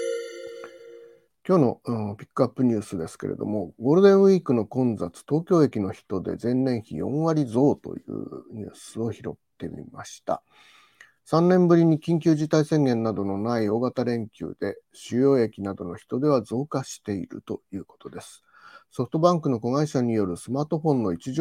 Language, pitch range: Japanese, 115-170 Hz